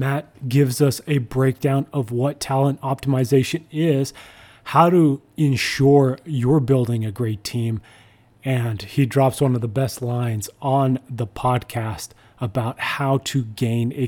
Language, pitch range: English, 115-135 Hz